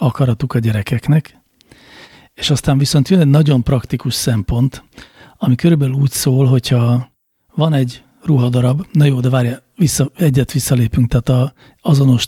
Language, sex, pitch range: Hungarian, male, 125-150 Hz